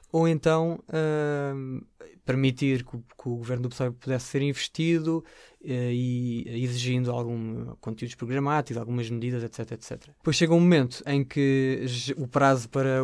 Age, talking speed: 20-39, 150 wpm